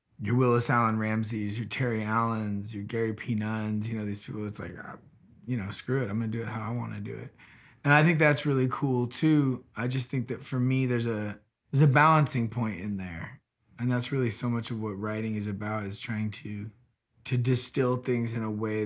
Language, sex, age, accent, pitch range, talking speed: English, male, 20-39, American, 110-125 Hz, 225 wpm